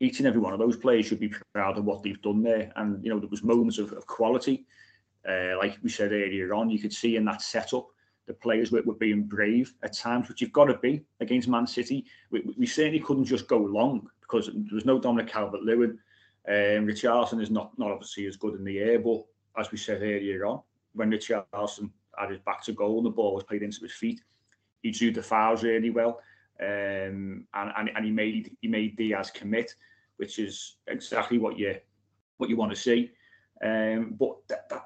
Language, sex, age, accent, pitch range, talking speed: English, male, 30-49, British, 105-130 Hz, 225 wpm